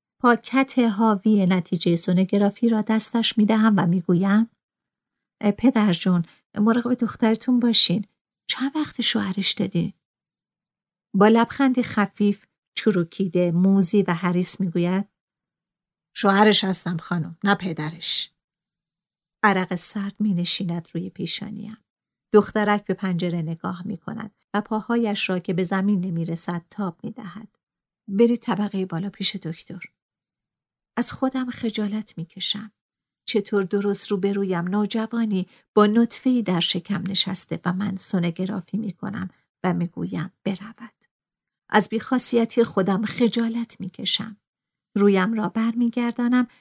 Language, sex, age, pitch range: Persian, female, 50-69, 185-220 Hz